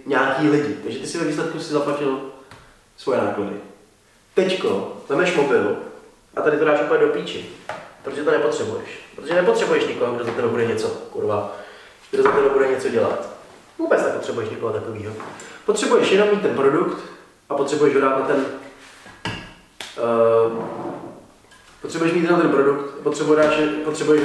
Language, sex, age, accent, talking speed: Czech, male, 20-39, native, 145 wpm